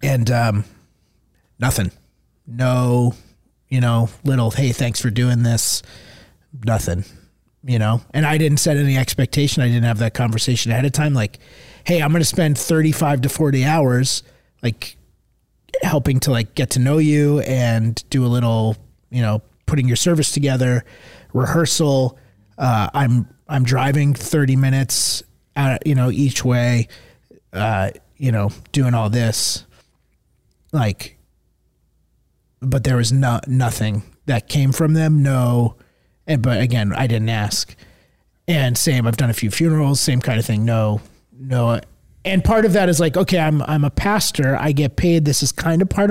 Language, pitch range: English, 115-145 Hz